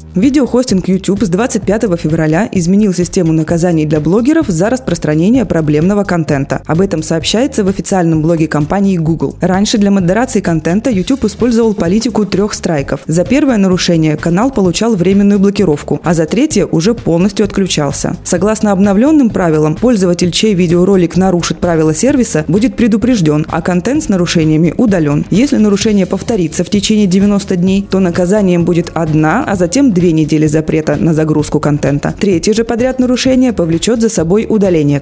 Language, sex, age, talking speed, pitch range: Russian, female, 20-39, 150 wpm, 160-215 Hz